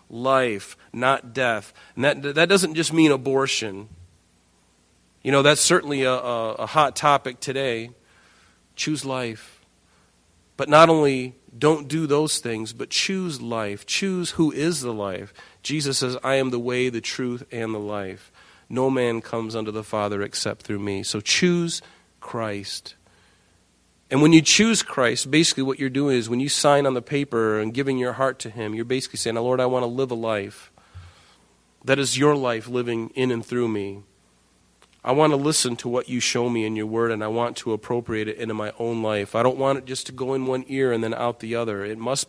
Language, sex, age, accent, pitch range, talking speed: English, male, 40-59, American, 110-135 Hz, 200 wpm